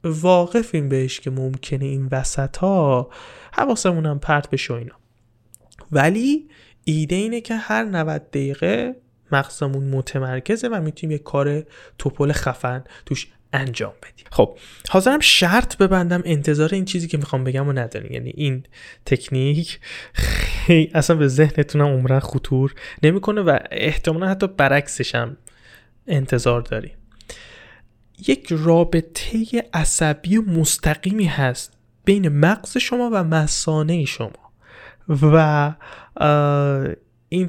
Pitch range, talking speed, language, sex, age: 135-190 Hz, 115 wpm, Persian, male, 20-39